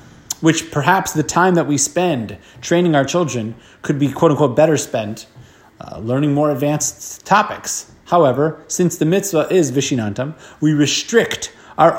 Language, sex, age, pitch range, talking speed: English, male, 30-49, 145-180 Hz, 145 wpm